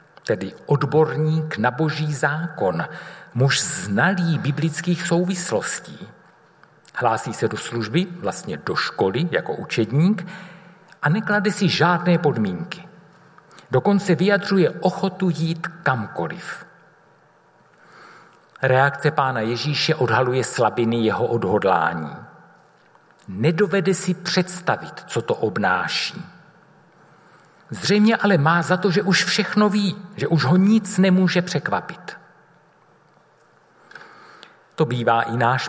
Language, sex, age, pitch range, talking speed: Czech, male, 60-79, 145-185 Hz, 100 wpm